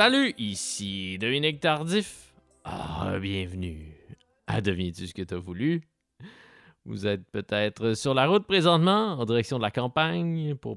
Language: French